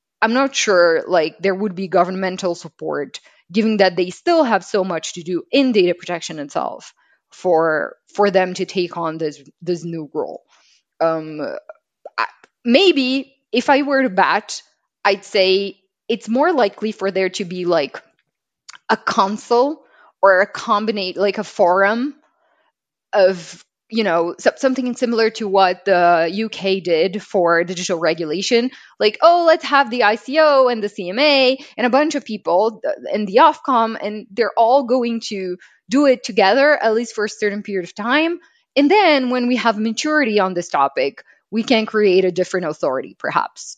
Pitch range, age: 180-255 Hz, 20-39